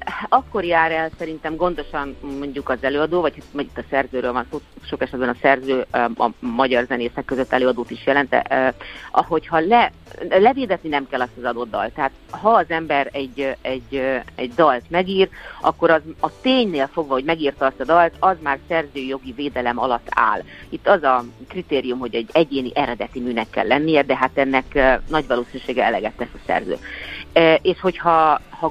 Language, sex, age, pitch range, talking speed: Hungarian, female, 40-59, 125-165 Hz, 170 wpm